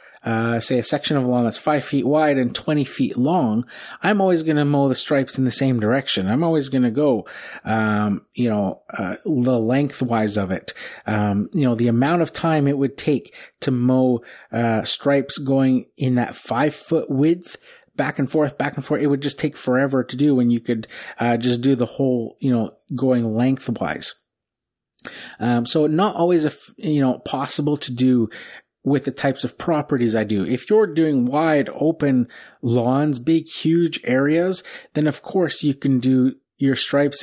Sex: male